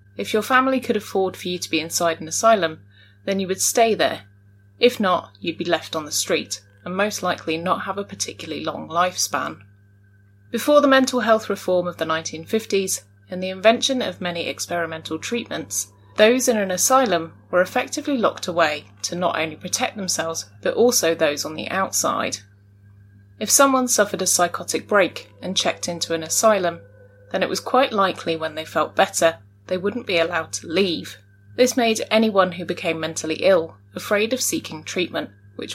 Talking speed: 180 wpm